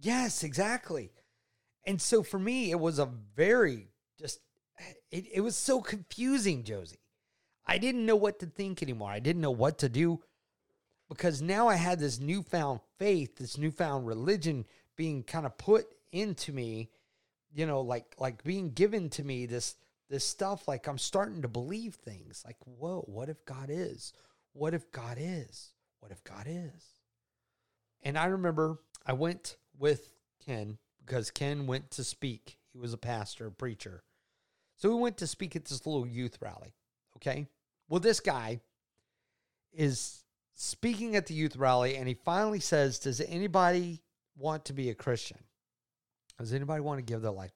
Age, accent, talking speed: 30-49, American, 170 wpm